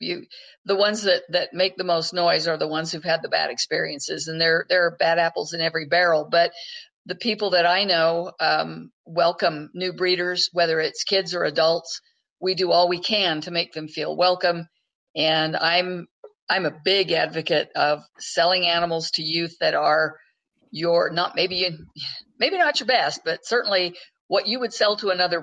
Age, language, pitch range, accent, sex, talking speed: 50-69, English, 165-195 Hz, American, female, 190 wpm